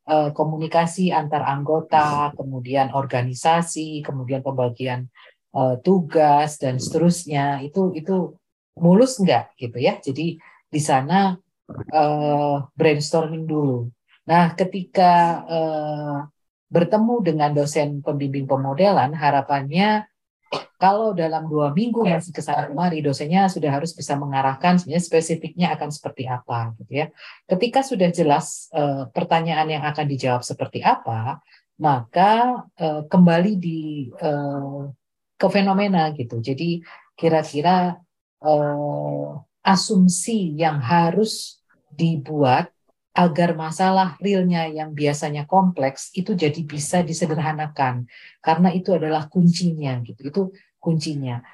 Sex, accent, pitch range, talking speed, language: female, native, 135-175 Hz, 110 wpm, Indonesian